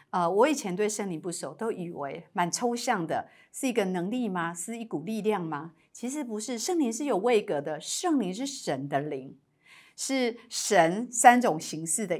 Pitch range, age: 175-255 Hz, 50-69